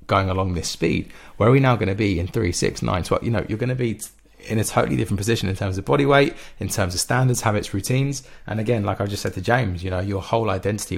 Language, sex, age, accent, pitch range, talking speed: English, male, 30-49, British, 95-115 Hz, 270 wpm